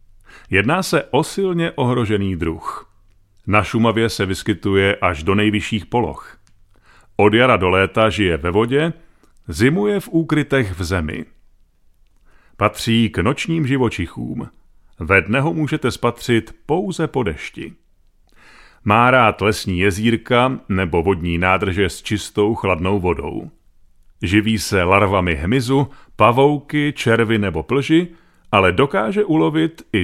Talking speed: 120 wpm